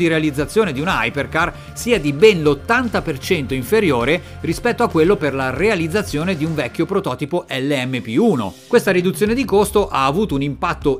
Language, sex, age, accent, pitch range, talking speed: Italian, male, 40-59, native, 145-205 Hz, 155 wpm